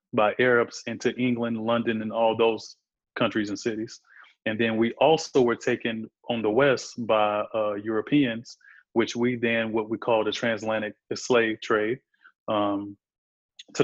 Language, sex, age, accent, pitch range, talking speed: English, male, 20-39, American, 110-120 Hz, 150 wpm